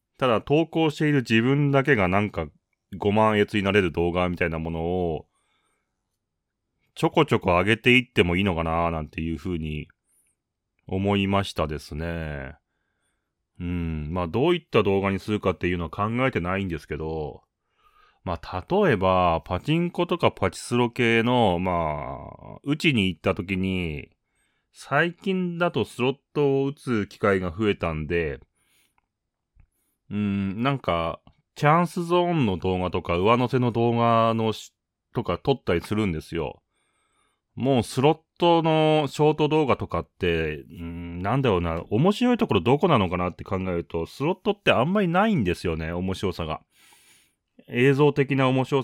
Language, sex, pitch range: Japanese, male, 85-145 Hz